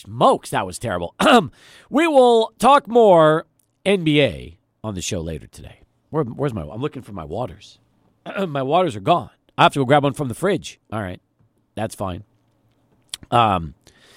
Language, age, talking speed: English, 50-69, 170 wpm